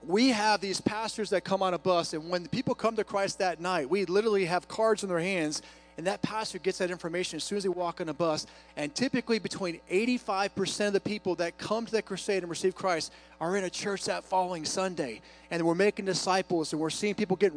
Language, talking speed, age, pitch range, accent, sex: English, 240 wpm, 30-49, 175-220 Hz, American, male